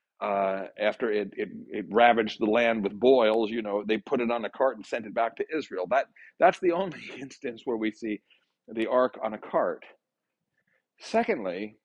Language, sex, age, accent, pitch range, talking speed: English, male, 40-59, American, 110-175 Hz, 190 wpm